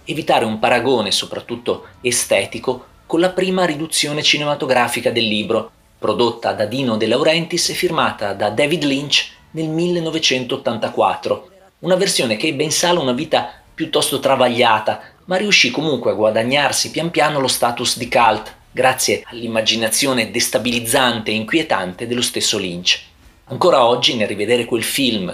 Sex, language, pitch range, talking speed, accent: male, Italian, 115-155 Hz, 140 wpm, native